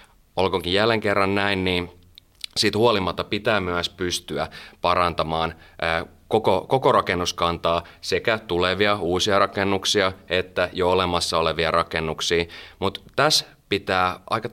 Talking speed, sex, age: 110 wpm, male, 30-49